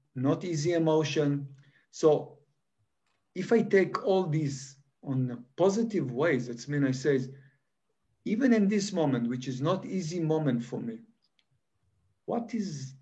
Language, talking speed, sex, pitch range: English, 135 wpm, male, 130-160 Hz